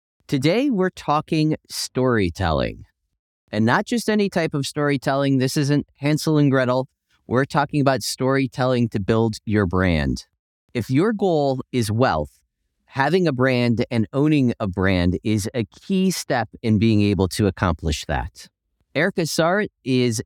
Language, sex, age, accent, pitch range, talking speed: English, male, 30-49, American, 105-145 Hz, 145 wpm